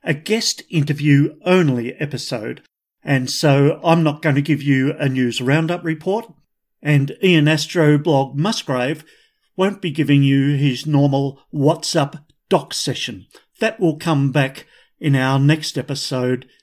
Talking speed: 140 wpm